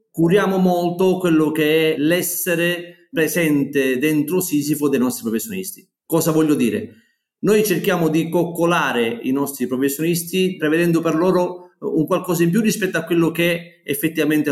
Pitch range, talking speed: 140-175 Hz, 140 wpm